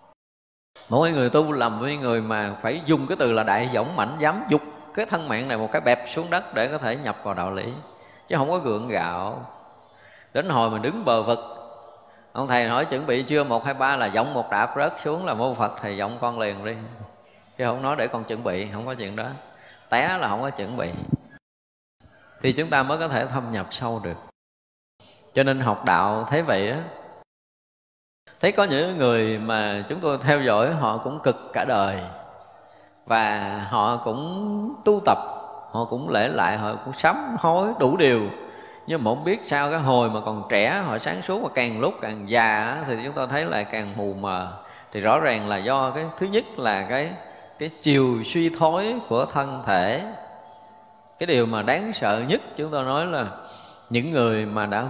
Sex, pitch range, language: male, 110-150 Hz, Vietnamese